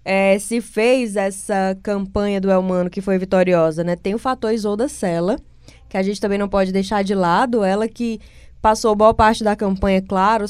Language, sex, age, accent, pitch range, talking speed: Portuguese, female, 20-39, Brazilian, 195-235 Hz, 190 wpm